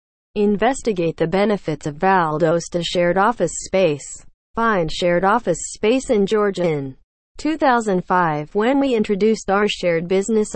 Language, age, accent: English, 40-59, American